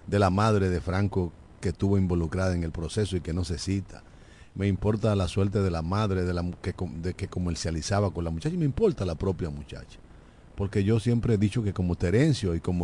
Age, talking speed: 50-69, 220 wpm